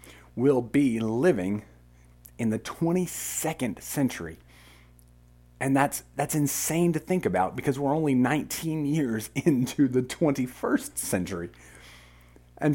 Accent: American